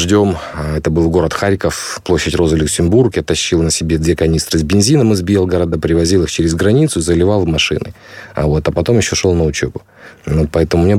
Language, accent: Russian, native